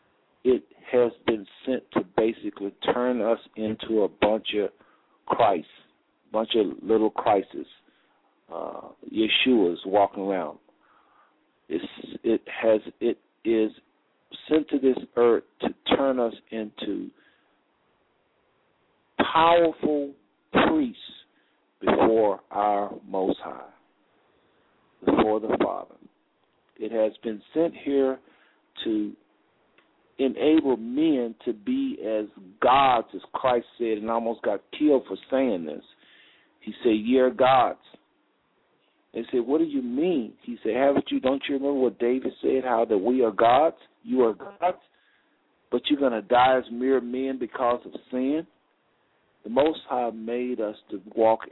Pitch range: 110-145 Hz